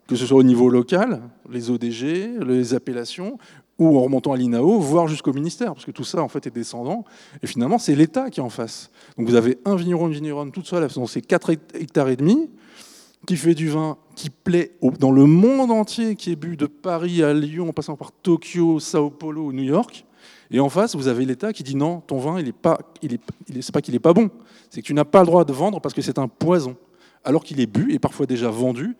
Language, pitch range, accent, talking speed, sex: French, 130-175 Hz, French, 245 wpm, male